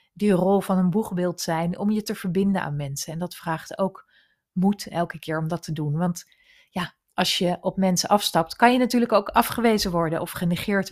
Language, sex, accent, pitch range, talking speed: Dutch, female, Dutch, 175-220 Hz, 210 wpm